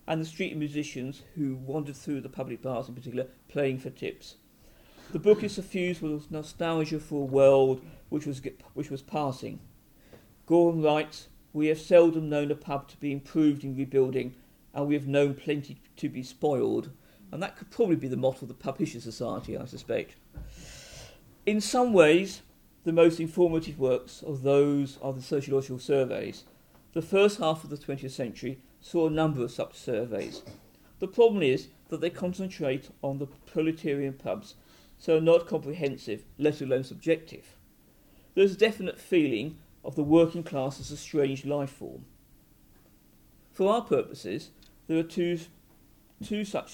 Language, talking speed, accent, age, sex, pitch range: English, 165 wpm, British, 50-69, male, 135-165 Hz